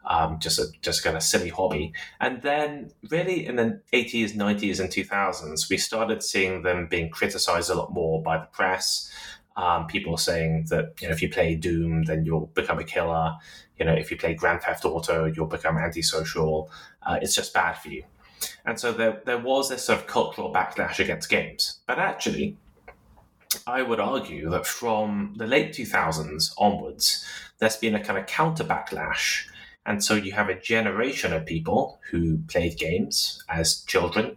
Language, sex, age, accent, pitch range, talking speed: English, male, 20-39, British, 80-115 Hz, 185 wpm